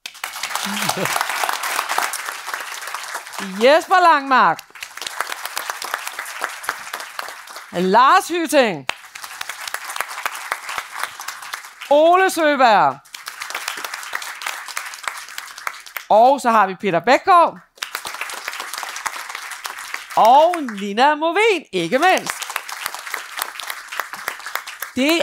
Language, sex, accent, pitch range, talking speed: Danish, female, native, 195-295 Hz, 45 wpm